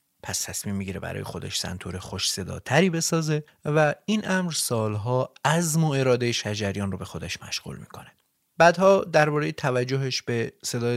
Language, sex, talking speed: Persian, male, 155 wpm